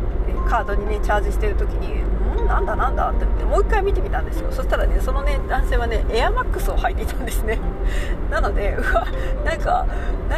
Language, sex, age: Japanese, female, 40-59